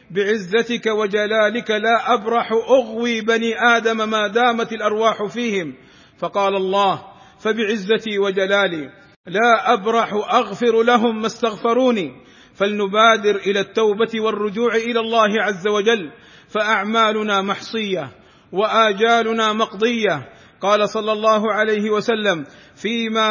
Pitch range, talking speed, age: 210-230 Hz, 100 wpm, 50-69